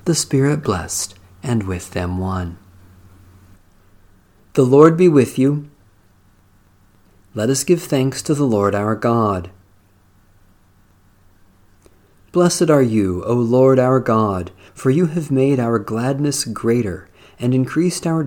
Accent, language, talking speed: American, English, 125 wpm